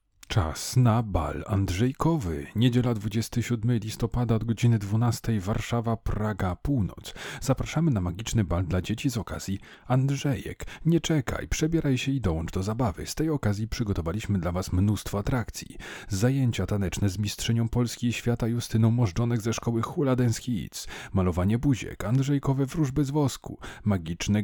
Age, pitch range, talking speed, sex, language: 40-59, 95-130 Hz, 145 wpm, male, Polish